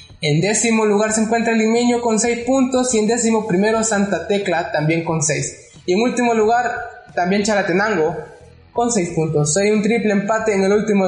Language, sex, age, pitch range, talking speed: Spanish, male, 20-39, 180-225 Hz, 185 wpm